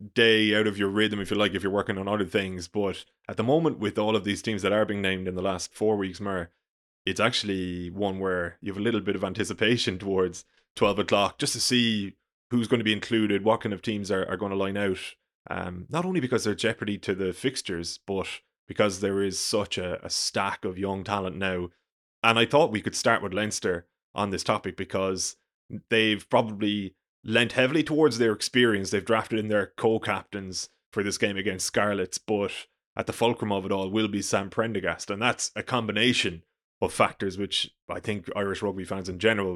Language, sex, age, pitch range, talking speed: English, male, 20-39, 95-110 Hz, 210 wpm